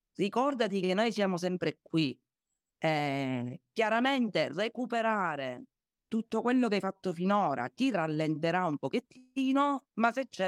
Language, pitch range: Italian, 140-200 Hz